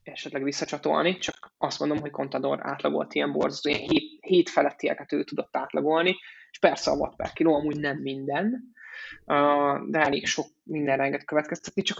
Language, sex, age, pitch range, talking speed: Hungarian, male, 20-39, 150-205 Hz, 165 wpm